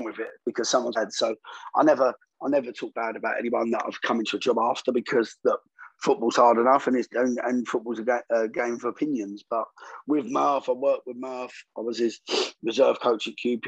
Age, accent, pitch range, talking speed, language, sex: 20-39, British, 115-130 Hz, 215 wpm, English, male